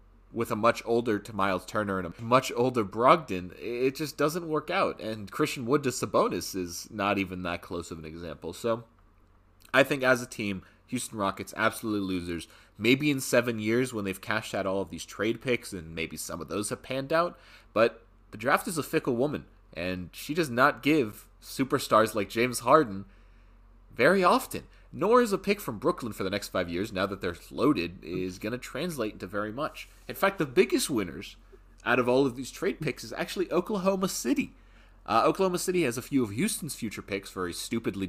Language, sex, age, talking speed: English, male, 30-49, 205 wpm